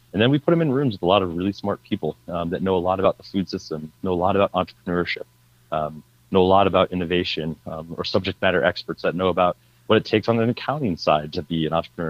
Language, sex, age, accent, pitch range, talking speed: English, male, 30-49, American, 80-95 Hz, 265 wpm